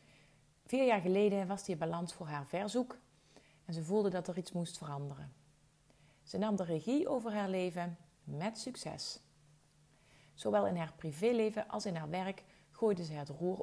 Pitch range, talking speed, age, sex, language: 155-200 Hz, 165 wpm, 40-59, female, Dutch